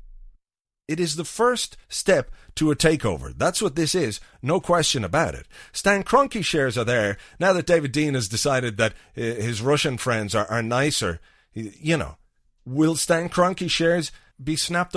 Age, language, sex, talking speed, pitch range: 40-59, English, male, 170 wpm, 110-170 Hz